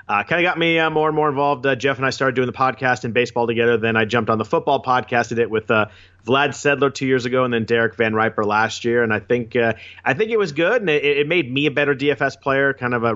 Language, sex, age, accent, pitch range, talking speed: English, male, 30-49, American, 110-135 Hz, 290 wpm